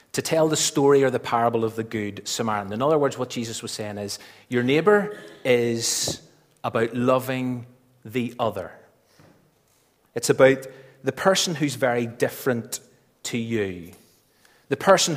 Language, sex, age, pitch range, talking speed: English, male, 30-49, 120-160 Hz, 145 wpm